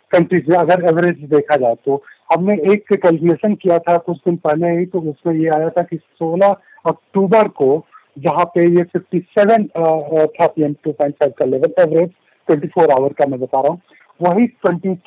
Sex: male